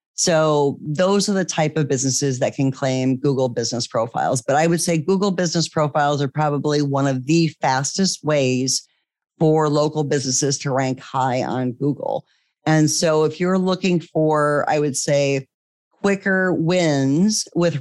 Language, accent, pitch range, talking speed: English, American, 135-170 Hz, 160 wpm